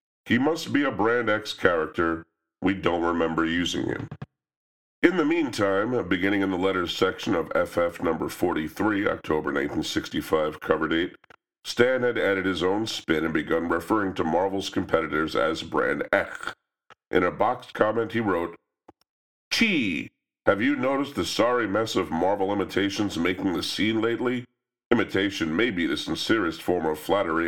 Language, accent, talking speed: English, American, 155 wpm